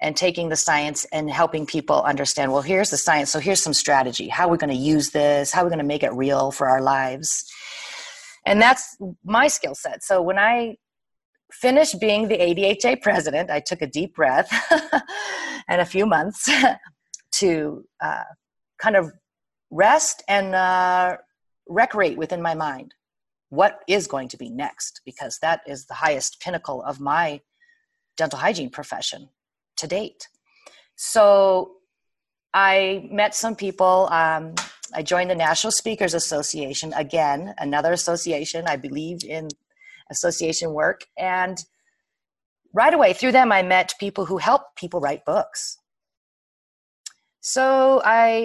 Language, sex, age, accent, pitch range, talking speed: English, female, 30-49, American, 155-220 Hz, 145 wpm